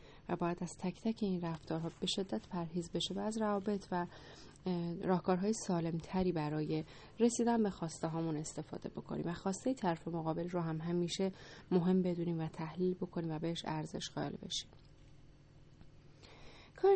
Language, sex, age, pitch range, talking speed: Persian, female, 30-49, 165-190 Hz, 155 wpm